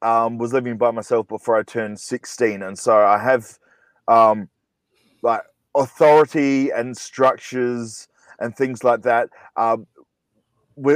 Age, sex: 20-39, male